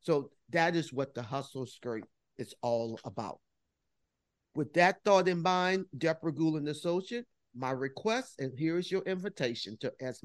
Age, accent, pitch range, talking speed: 50-69, American, 125-175 Hz, 165 wpm